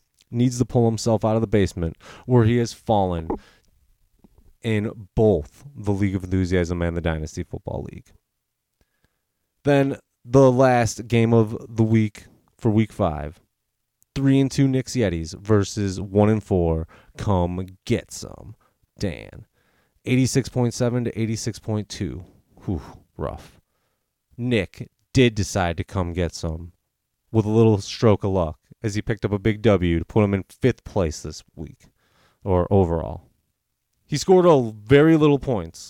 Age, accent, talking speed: 30-49, American, 145 wpm